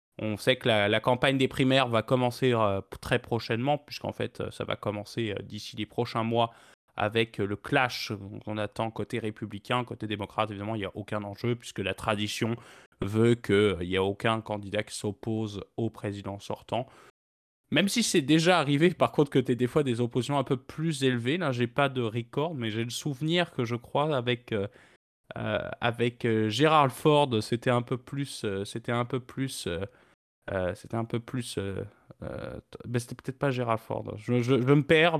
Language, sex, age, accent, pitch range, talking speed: French, male, 20-39, French, 110-135 Hz, 205 wpm